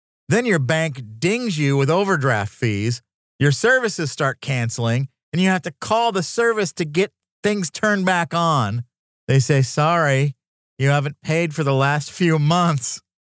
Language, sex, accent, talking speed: English, male, American, 165 wpm